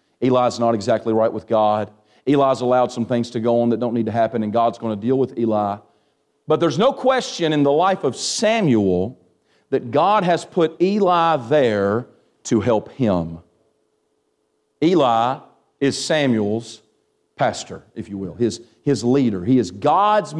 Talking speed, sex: 165 wpm, male